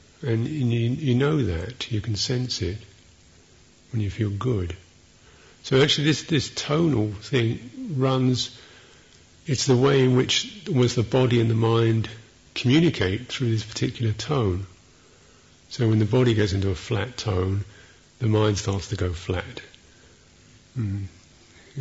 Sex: male